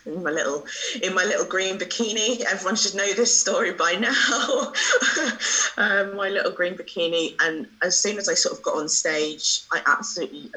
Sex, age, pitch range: female, 20-39, 150-180 Hz